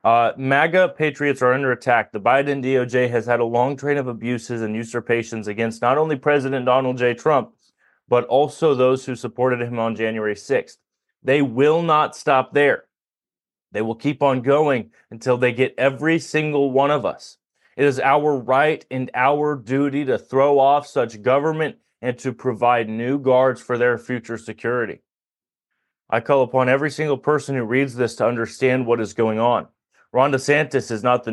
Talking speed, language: 180 wpm, English